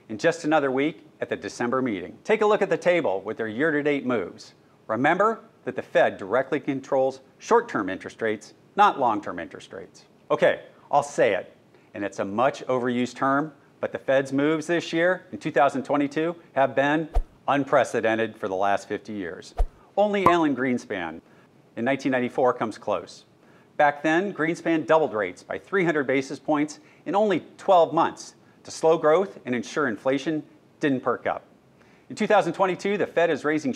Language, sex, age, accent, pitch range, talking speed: English, male, 40-59, American, 130-170 Hz, 165 wpm